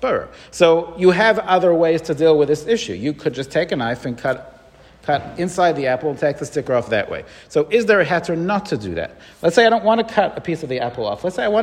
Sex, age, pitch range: male, 40-59, 145-190 Hz